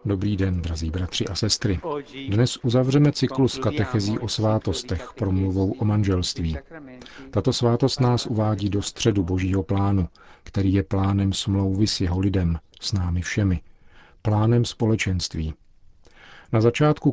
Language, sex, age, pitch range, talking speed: Czech, male, 40-59, 95-115 Hz, 130 wpm